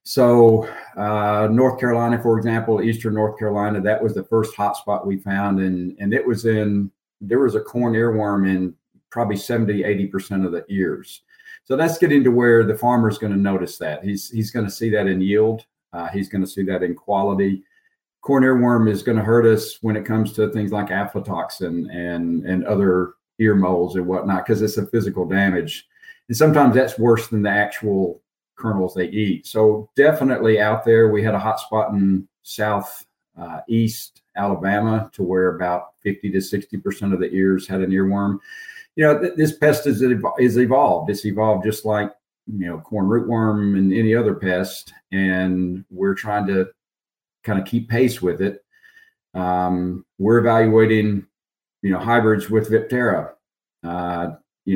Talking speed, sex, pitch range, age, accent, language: 180 wpm, male, 95-115 Hz, 50-69, American, English